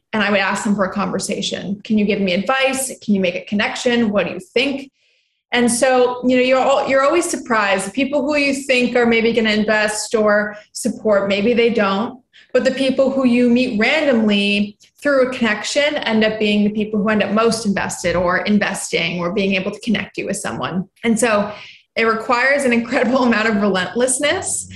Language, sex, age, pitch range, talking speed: English, female, 20-39, 200-250 Hz, 205 wpm